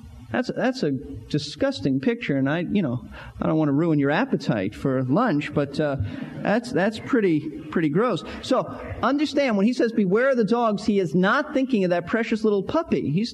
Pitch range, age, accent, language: 155-230 Hz, 40-59, American, English